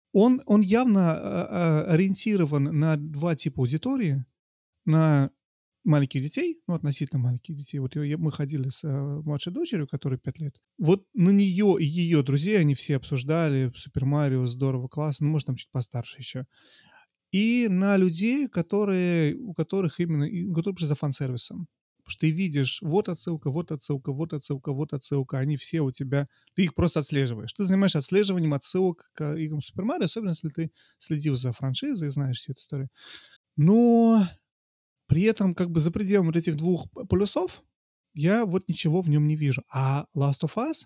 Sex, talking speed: male, 165 wpm